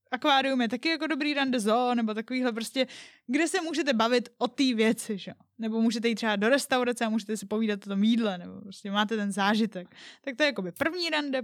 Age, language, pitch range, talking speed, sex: 10-29, Czech, 220-275 Hz, 225 wpm, female